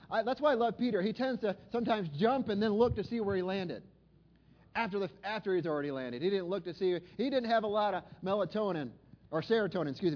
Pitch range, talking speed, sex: 175-215 Hz, 235 wpm, male